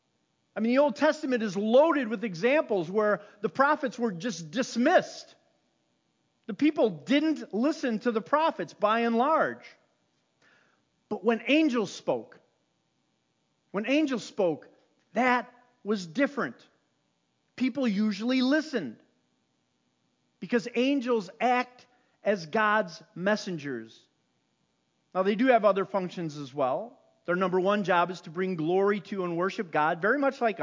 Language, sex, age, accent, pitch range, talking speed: English, male, 40-59, American, 190-250 Hz, 130 wpm